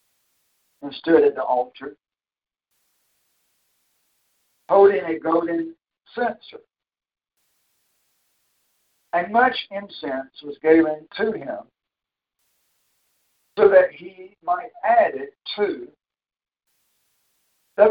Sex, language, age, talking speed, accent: male, English, 50-69, 80 wpm, American